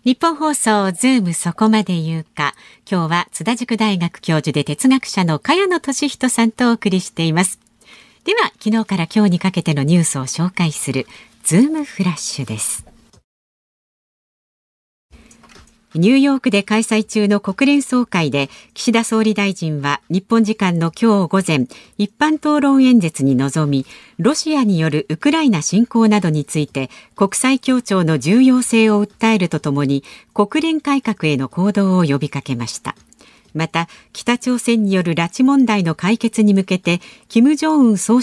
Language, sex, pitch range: Japanese, female, 160-240 Hz